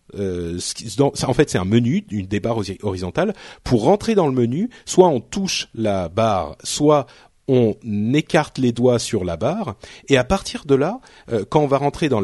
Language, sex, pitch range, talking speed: French, male, 110-150 Hz, 180 wpm